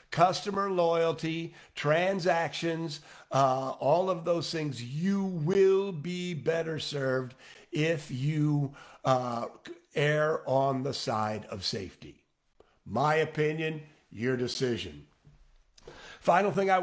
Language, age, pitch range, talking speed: English, 50-69, 135-175 Hz, 105 wpm